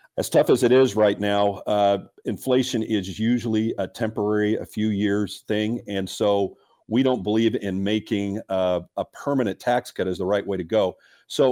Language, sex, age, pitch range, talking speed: English, male, 50-69, 95-110 Hz, 190 wpm